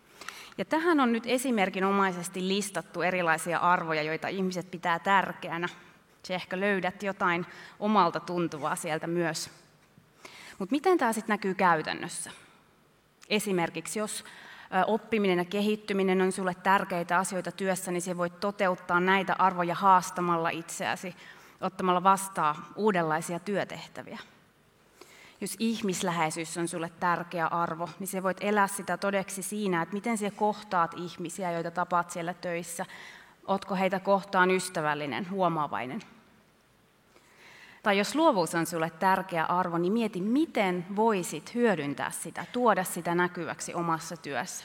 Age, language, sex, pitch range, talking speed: 30-49, Finnish, female, 170-200 Hz, 125 wpm